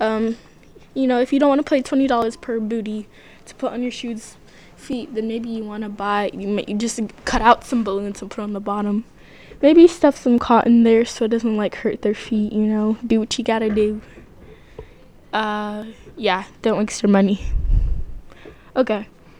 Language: English